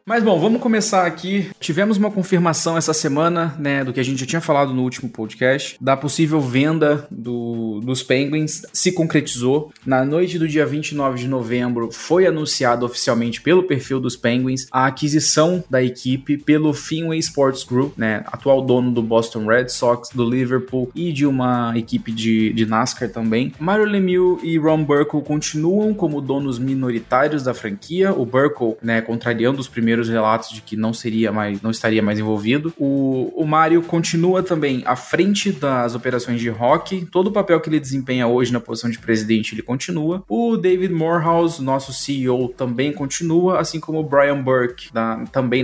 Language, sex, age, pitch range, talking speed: Portuguese, male, 20-39, 120-165 Hz, 175 wpm